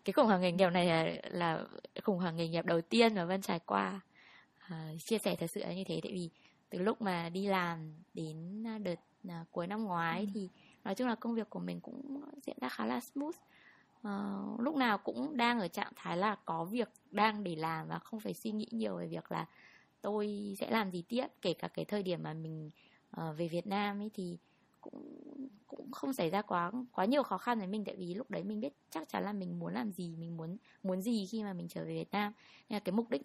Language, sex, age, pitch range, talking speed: Vietnamese, female, 20-39, 170-220 Hz, 240 wpm